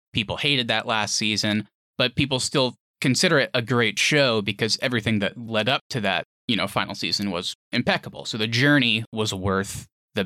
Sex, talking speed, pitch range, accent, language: male, 185 wpm, 110-135 Hz, American, English